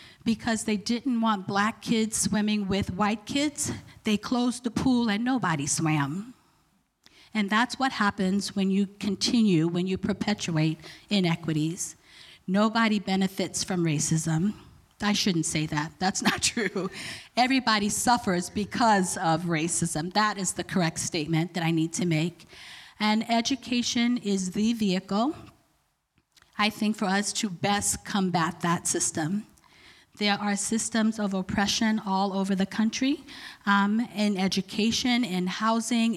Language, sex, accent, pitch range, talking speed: English, female, American, 180-220 Hz, 135 wpm